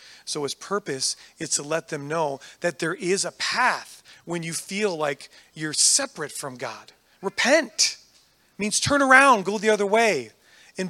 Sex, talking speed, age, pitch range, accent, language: male, 170 wpm, 30-49, 155-210 Hz, American, English